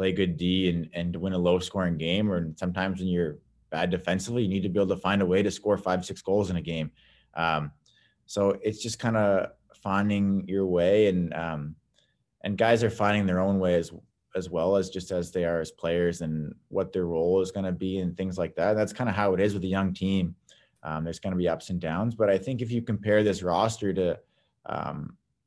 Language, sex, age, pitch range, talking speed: English, male, 20-39, 85-100 Hz, 235 wpm